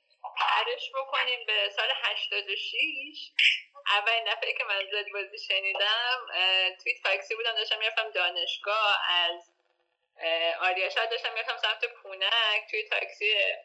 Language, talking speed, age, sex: Persian, 120 wpm, 20-39, female